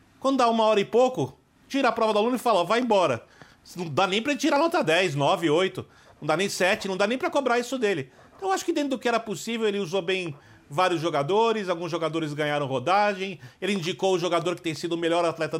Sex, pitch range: male, 155-205 Hz